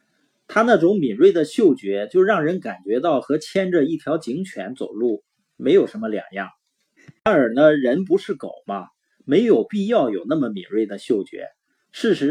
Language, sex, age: Chinese, male, 30-49